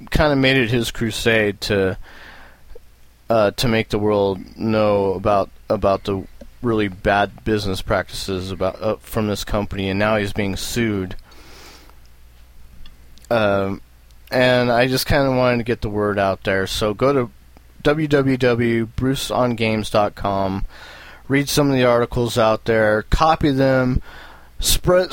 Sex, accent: male, American